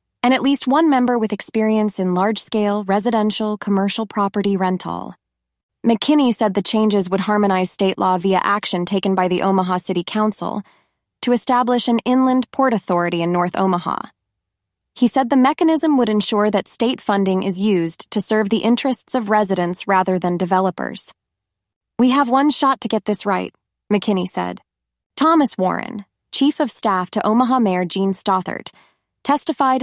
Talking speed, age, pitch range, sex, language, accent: 160 wpm, 20-39, 195-245 Hz, female, English, American